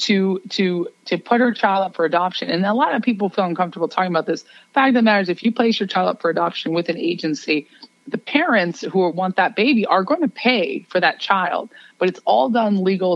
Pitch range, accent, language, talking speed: 175-230 Hz, American, English, 235 wpm